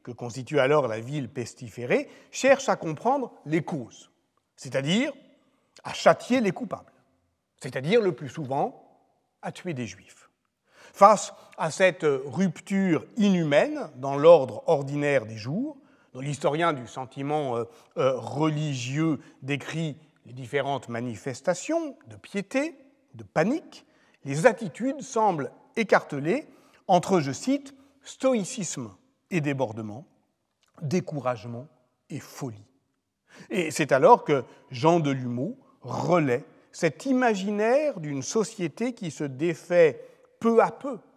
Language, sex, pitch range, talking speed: French, male, 135-205 Hz, 115 wpm